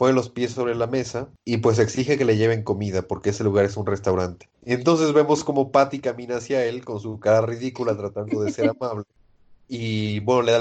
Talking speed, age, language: 220 wpm, 30-49, Spanish